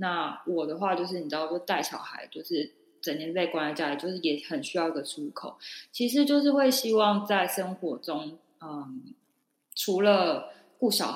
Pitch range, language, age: 160-255 Hz, Chinese, 20-39